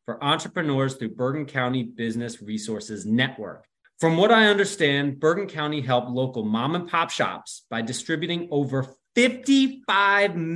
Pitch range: 125-170 Hz